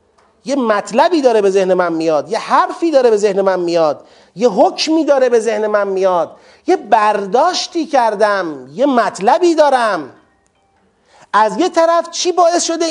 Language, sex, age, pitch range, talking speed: Persian, male, 40-59, 235-305 Hz, 155 wpm